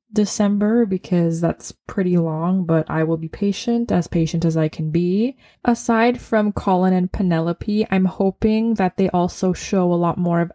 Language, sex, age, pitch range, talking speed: English, female, 20-39, 170-200 Hz, 175 wpm